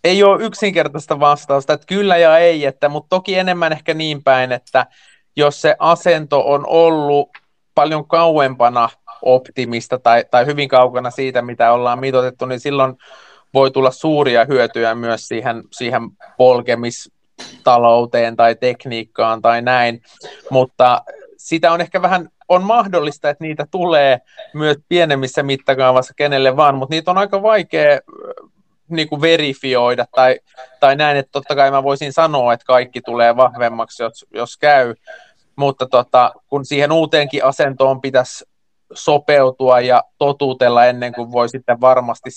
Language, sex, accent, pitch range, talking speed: Finnish, male, native, 125-145 Hz, 140 wpm